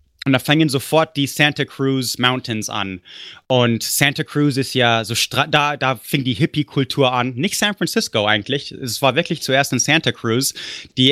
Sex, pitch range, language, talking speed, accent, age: male, 120-145 Hz, German, 180 wpm, German, 30-49